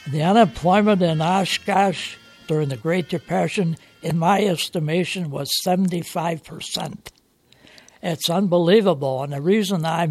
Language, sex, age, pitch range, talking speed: English, male, 60-79, 155-180 Hz, 115 wpm